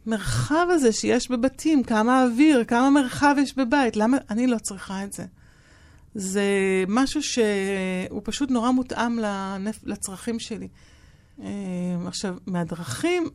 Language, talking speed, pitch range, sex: Hebrew, 115 wpm, 200-260 Hz, female